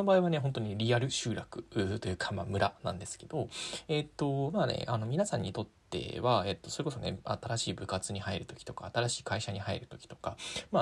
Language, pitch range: Japanese, 100-145 Hz